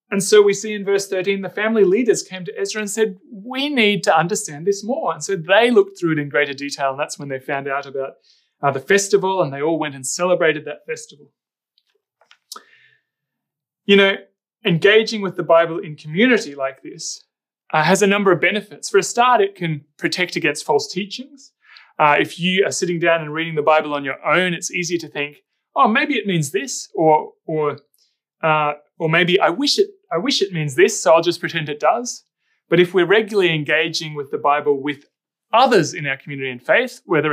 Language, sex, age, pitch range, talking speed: English, male, 30-49, 150-210 Hz, 210 wpm